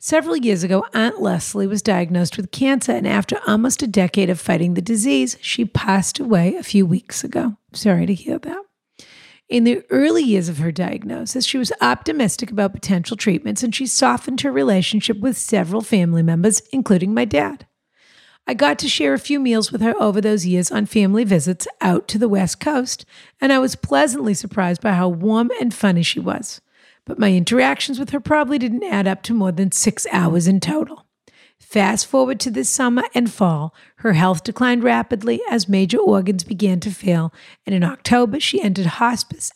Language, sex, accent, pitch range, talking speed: English, female, American, 190-245 Hz, 190 wpm